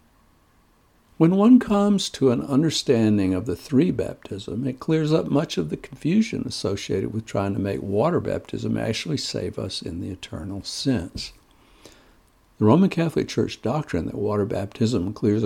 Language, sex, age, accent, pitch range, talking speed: English, male, 60-79, American, 100-135 Hz, 150 wpm